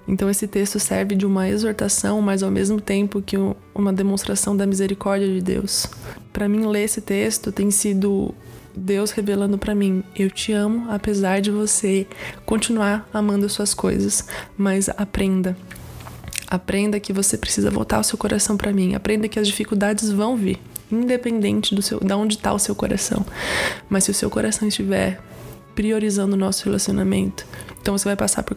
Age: 20-39